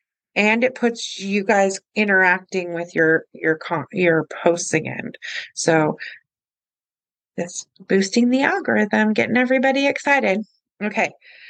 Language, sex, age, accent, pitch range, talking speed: English, female, 30-49, American, 175-235 Hz, 110 wpm